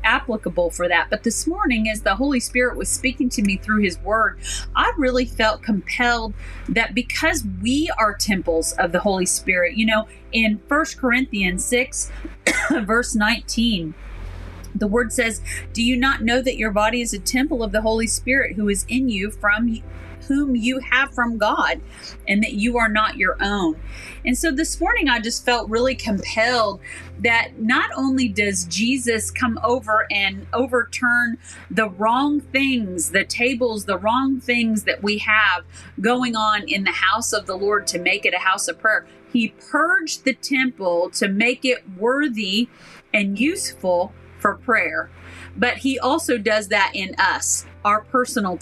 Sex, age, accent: female, 40-59, American